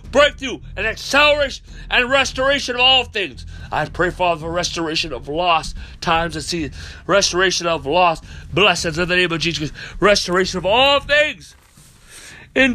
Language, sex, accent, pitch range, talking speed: English, male, American, 105-135 Hz, 150 wpm